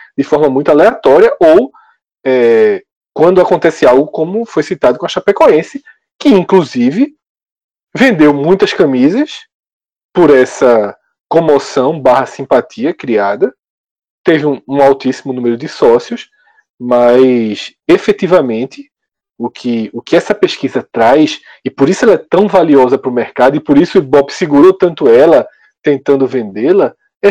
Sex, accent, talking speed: male, Brazilian, 135 wpm